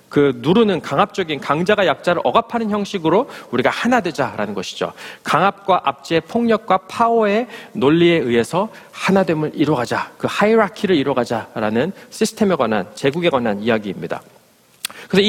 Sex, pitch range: male, 140-205 Hz